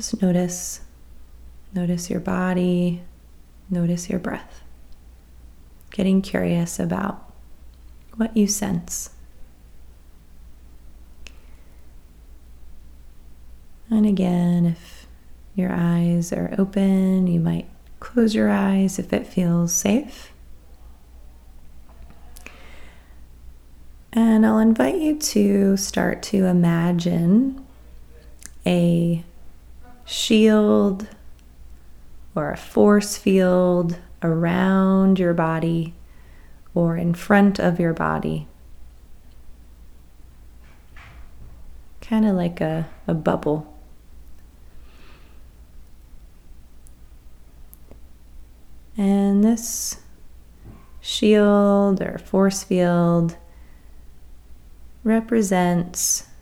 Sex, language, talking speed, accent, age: female, English, 70 wpm, American, 30-49